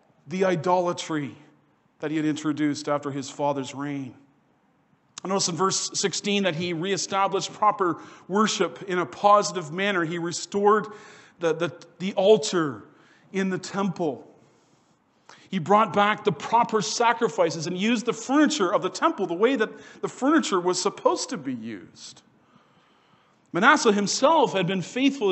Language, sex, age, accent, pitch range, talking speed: English, male, 40-59, American, 160-215 Hz, 140 wpm